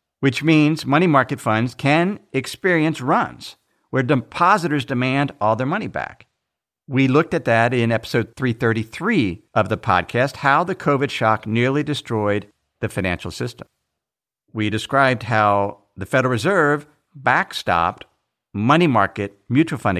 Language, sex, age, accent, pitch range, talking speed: English, male, 50-69, American, 115-175 Hz, 135 wpm